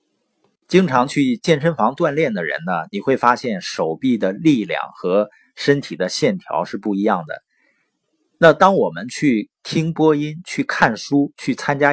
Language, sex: Chinese, male